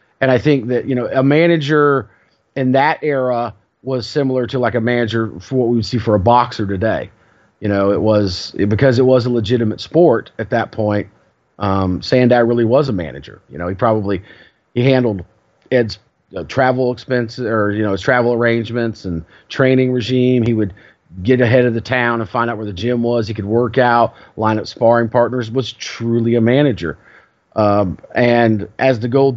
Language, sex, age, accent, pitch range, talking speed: English, male, 40-59, American, 110-130 Hz, 195 wpm